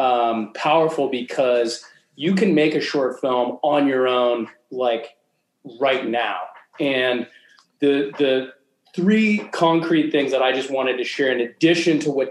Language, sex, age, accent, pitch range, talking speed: English, male, 30-49, American, 130-170 Hz, 150 wpm